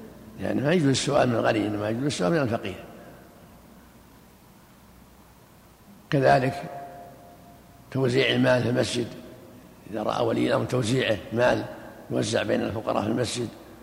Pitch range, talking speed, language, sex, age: 110-135 Hz, 115 wpm, Arabic, male, 60-79